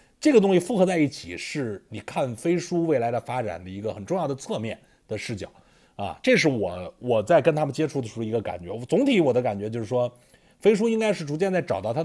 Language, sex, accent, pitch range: Chinese, male, native, 140-210 Hz